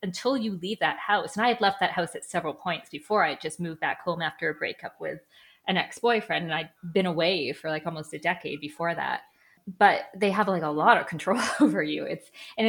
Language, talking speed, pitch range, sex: English, 235 wpm, 170-230 Hz, female